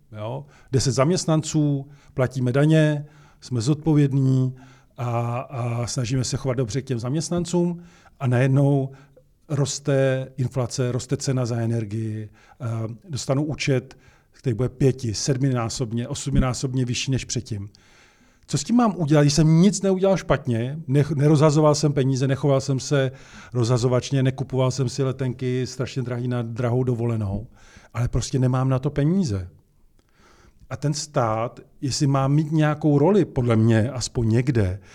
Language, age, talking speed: Czech, 40-59, 130 wpm